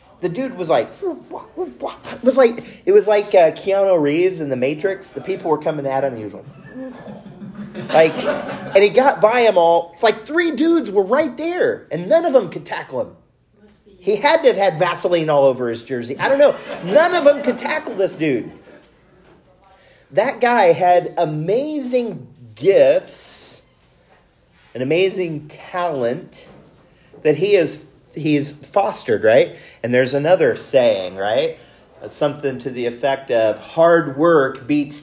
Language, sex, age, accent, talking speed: English, male, 30-49, American, 155 wpm